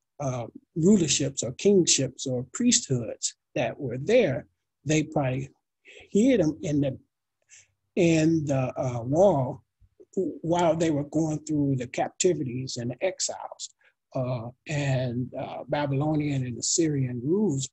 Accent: American